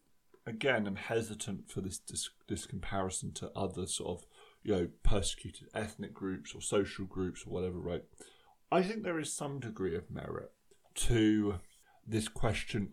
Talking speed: 160 wpm